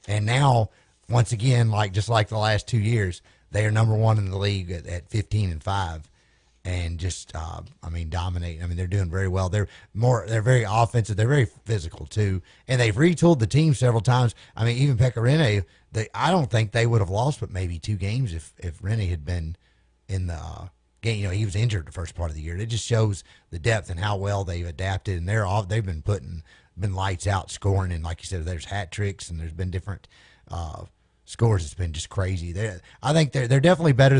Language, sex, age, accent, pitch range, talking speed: English, male, 30-49, American, 90-110 Hz, 230 wpm